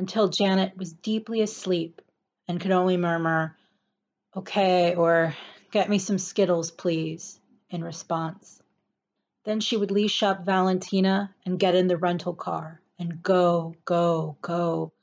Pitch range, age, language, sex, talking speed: 175-205 Hz, 30-49, English, female, 135 wpm